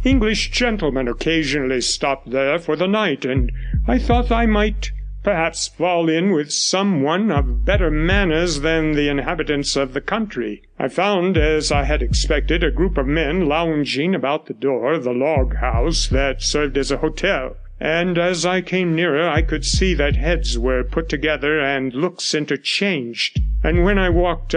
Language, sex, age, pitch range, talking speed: English, male, 50-69, 140-185 Hz, 170 wpm